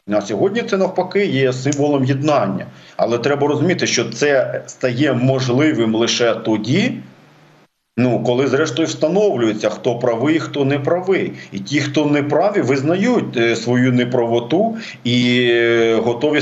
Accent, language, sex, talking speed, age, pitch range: native, Ukrainian, male, 120 wpm, 40-59, 120-150 Hz